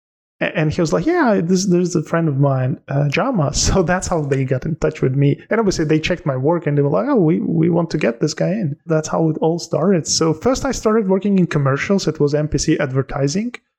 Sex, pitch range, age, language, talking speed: male, 140-170 Hz, 20-39, English, 255 wpm